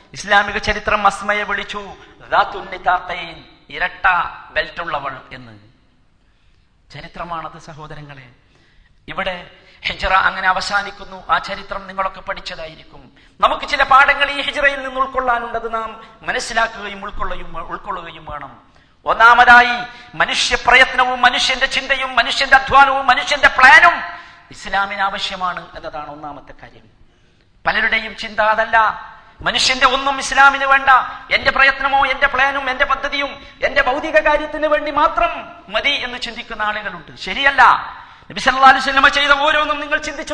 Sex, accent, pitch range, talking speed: male, native, 200-290 Hz, 100 wpm